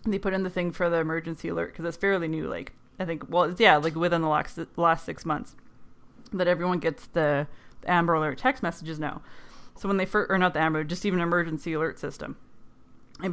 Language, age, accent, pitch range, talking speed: English, 20-39, American, 155-185 Hz, 215 wpm